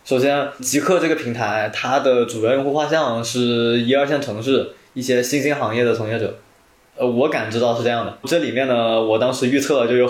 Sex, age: male, 20-39